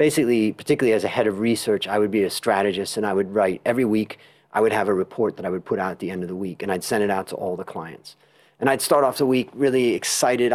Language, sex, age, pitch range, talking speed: English, male, 30-49, 105-130 Hz, 290 wpm